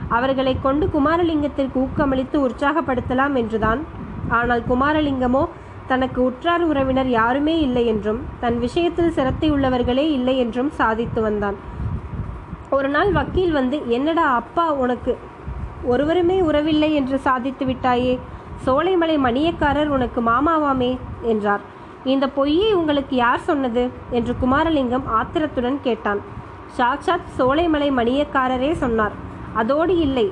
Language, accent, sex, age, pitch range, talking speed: Tamil, native, female, 20-39, 245-295 Hz, 105 wpm